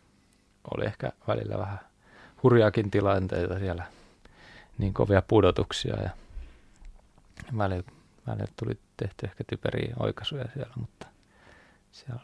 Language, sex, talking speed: Finnish, male, 95 wpm